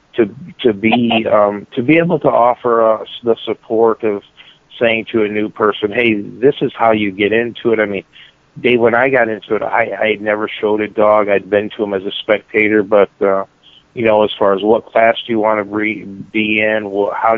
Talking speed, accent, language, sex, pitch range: 225 wpm, American, English, male, 100-110 Hz